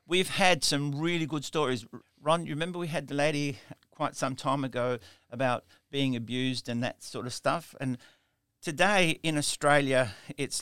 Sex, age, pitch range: male, 60-79, 120-145 Hz